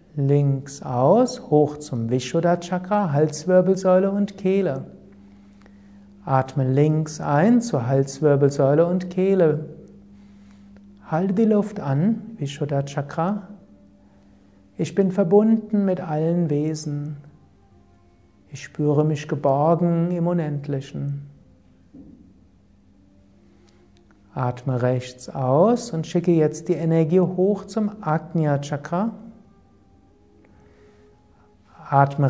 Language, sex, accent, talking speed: German, male, German, 85 wpm